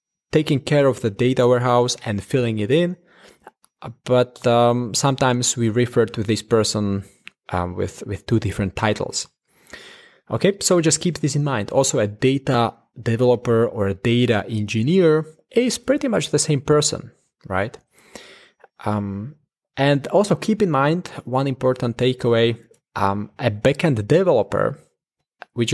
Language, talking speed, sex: English, 140 wpm, male